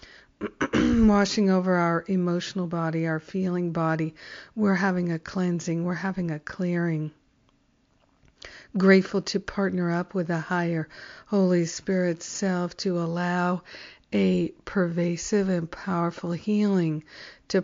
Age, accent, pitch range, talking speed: 50-69, American, 165-185 Hz, 115 wpm